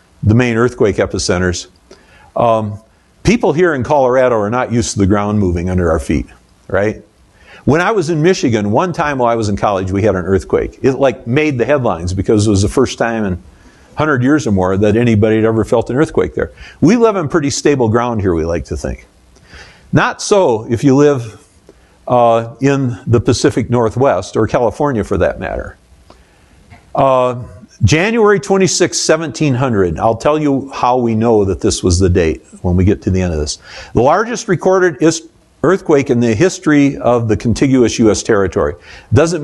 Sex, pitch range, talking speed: male, 100-140 Hz, 185 wpm